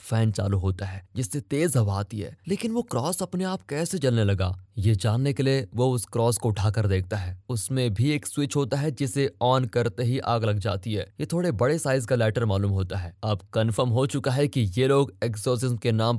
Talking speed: 225 wpm